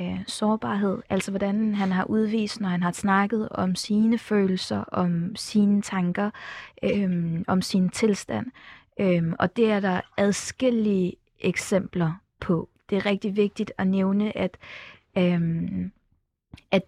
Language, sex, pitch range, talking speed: Danish, female, 180-215 Hz, 120 wpm